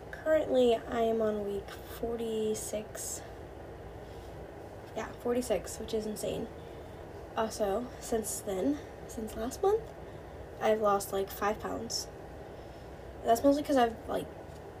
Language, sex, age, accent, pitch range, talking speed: English, female, 10-29, American, 205-240 Hz, 110 wpm